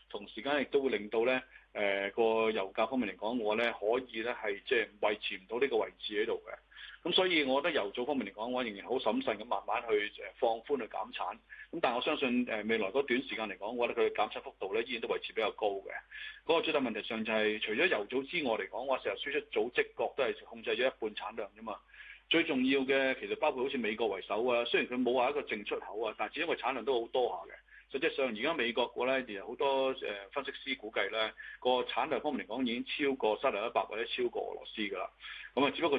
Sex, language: male, Chinese